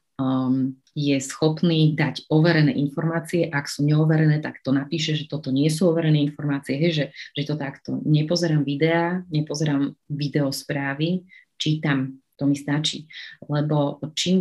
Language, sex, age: Slovak, female, 30-49